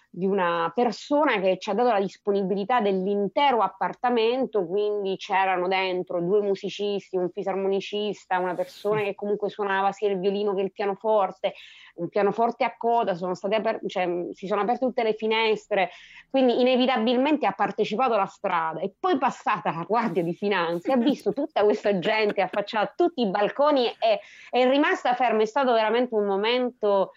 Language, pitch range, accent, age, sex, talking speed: Italian, 195-245 Hz, native, 20-39, female, 165 wpm